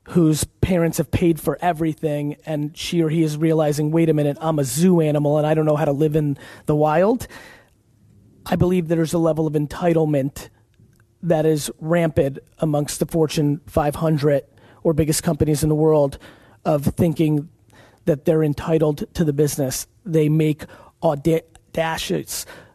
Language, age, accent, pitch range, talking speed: English, 30-49, American, 145-165 Hz, 160 wpm